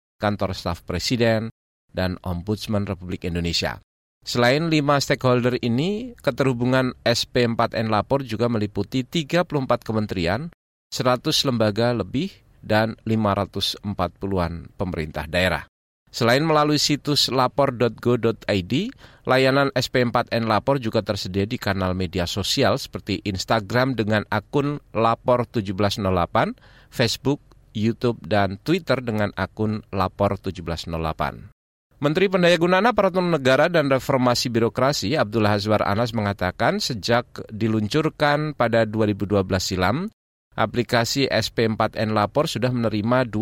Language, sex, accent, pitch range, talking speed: Indonesian, male, native, 100-130 Hz, 100 wpm